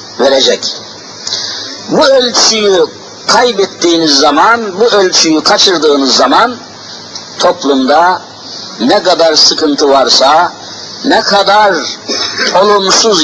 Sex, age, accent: male, 50-69, native